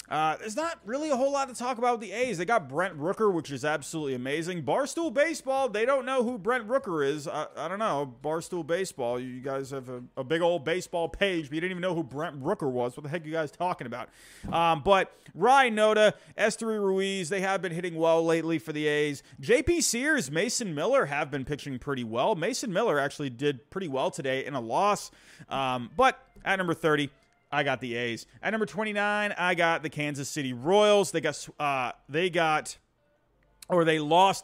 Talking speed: 215 wpm